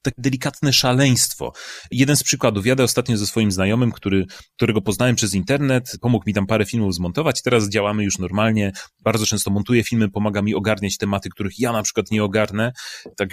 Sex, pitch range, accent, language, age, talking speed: male, 100-125 Hz, native, Polish, 30-49, 185 wpm